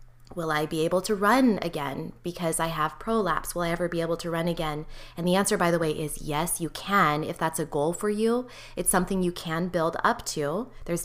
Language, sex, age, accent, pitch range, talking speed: English, female, 20-39, American, 160-200 Hz, 235 wpm